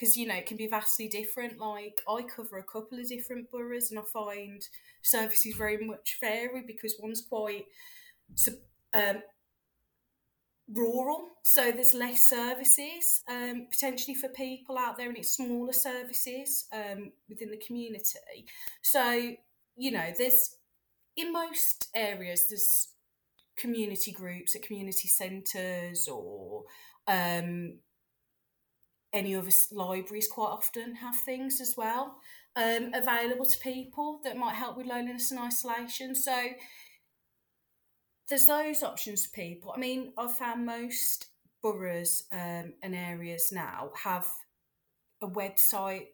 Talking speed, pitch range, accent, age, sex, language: 130 wpm, 195-255 Hz, British, 30-49, female, English